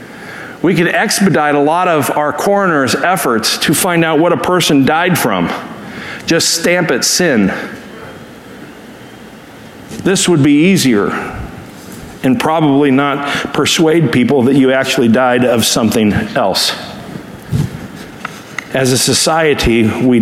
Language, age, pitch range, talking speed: English, 50-69, 140-190 Hz, 120 wpm